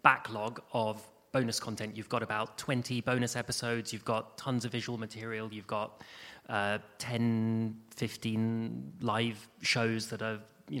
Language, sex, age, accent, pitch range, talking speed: English, male, 30-49, British, 115-155 Hz, 145 wpm